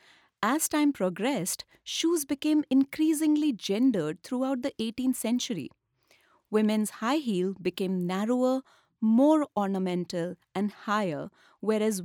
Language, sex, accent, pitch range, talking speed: English, female, Indian, 185-255 Hz, 105 wpm